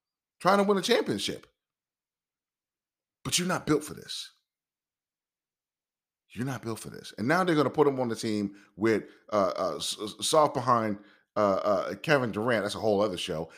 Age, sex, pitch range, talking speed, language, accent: 30-49, male, 90-125 Hz, 175 wpm, English, American